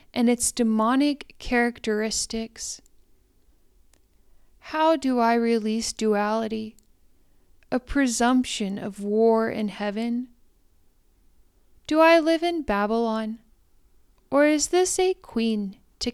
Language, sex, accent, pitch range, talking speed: English, female, American, 215-265 Hz, 95 wpm